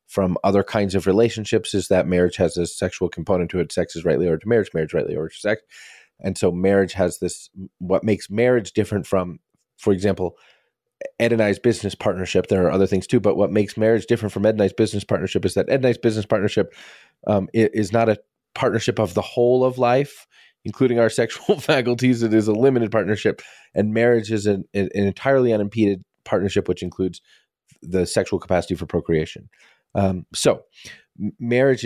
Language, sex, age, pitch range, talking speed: English, male, 30-49, 90-110 Hz, 195 wpm